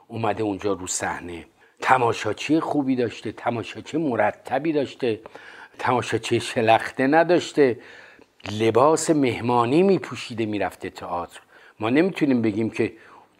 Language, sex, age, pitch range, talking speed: Persian, male, 50-69, 110-145 Hz, 100 wpm